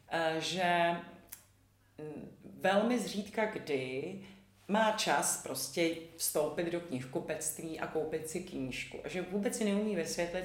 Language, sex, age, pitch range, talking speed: Czech, female, 40-59, 155-185 Hz, 110 wpm